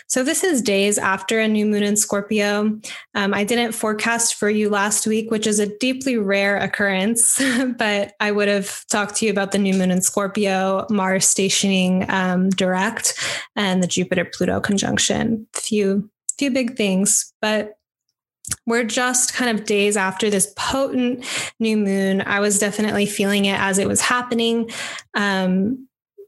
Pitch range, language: 200-230 Hz, English